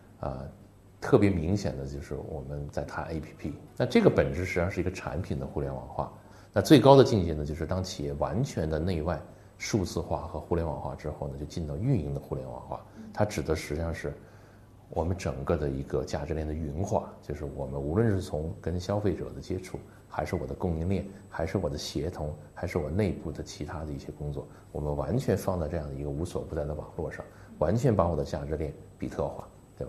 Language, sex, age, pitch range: Chinese, male, 30-49, 75-110 Hz